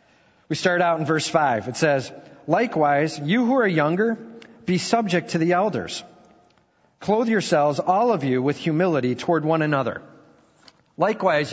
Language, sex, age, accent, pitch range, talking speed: English, male, 40-59, American, 135-175 Hz, 150 wpm